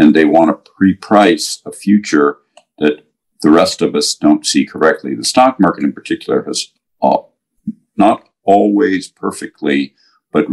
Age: 50-69